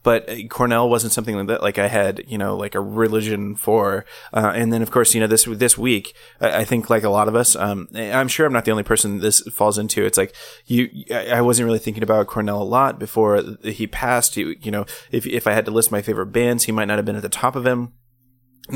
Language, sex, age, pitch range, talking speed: English, male, 20-39, 110-125 Hz, 255 wpm